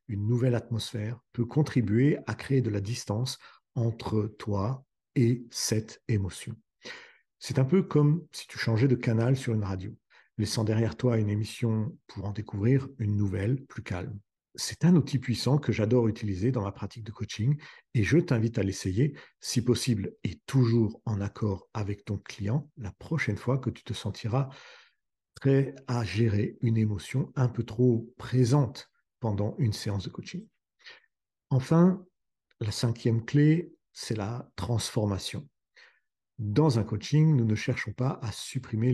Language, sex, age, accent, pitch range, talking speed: French, male, 50-69, French, 105-130 Hz, 155 wpm